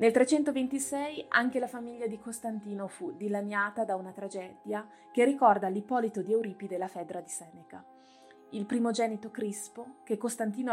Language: Italian